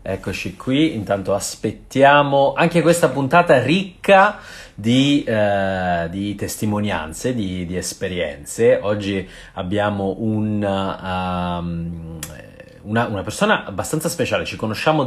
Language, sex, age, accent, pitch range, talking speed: Italian, male, 30-49, native, 100-155 Hz, 105 wpm